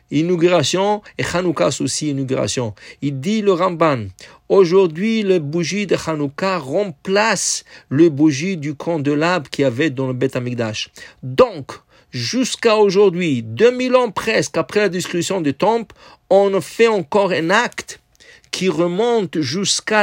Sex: male